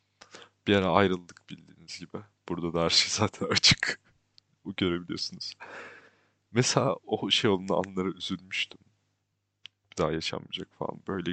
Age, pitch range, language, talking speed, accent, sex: 30-49, 95-115 Hz, Turkish, 125 wpm, native, male